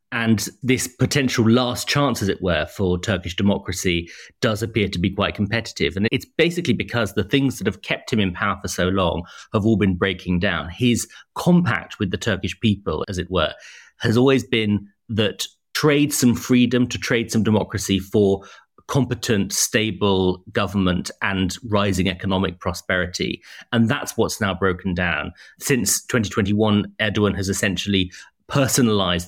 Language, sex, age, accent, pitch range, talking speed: English, male, 30-49, British, 90-115 Hz, 160 wpm